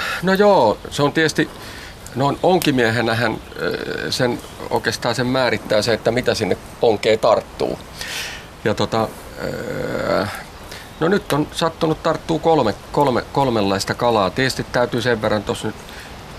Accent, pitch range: native, 105-135 Hz